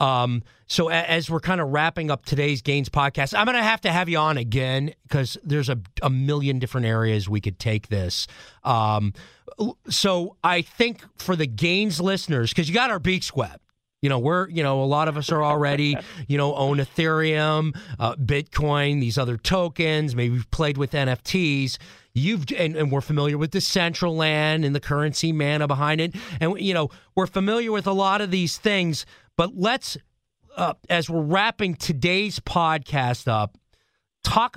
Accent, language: American, English